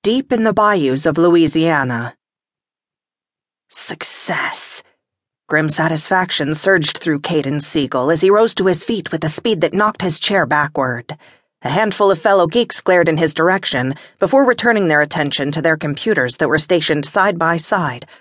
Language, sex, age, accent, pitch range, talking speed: English, female, 40-59, American, 150-200 Hz, 160 wpm